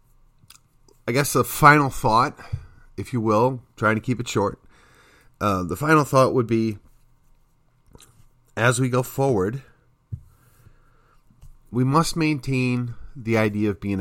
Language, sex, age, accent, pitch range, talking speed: English, male, 40-59, American, 115-155 Hz, 130 wpm